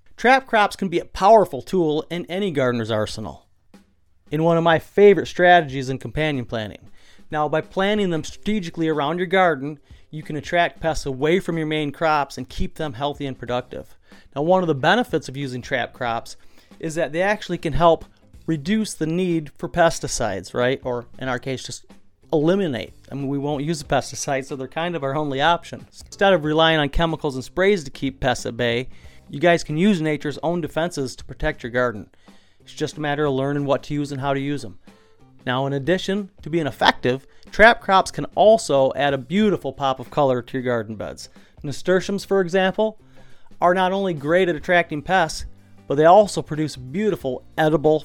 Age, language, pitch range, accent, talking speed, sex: 40-59, English, 130-165 Hz, American, 195 wpm, male